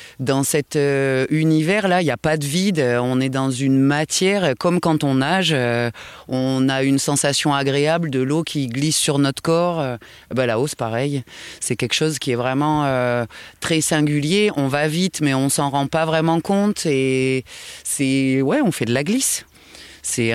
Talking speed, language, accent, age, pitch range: 195 wpm, French, French, 20-39, 130-160 Hz